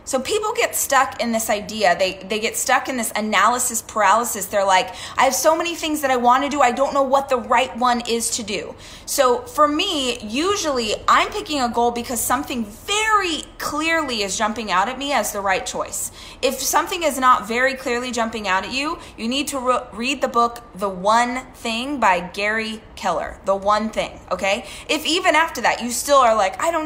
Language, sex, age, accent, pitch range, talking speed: English, female, 20-39, American, 230-300 Hz, 210 wpm